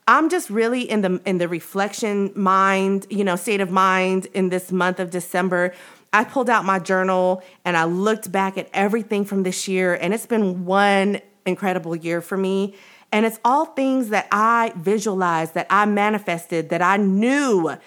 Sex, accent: female, American